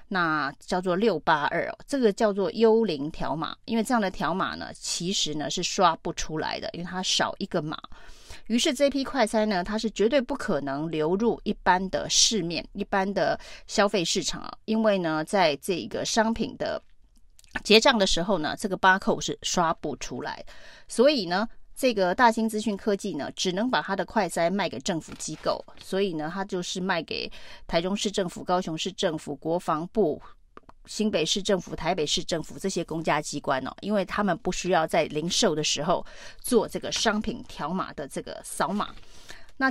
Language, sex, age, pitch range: Chinese, female, 30-49, 170-225 Hz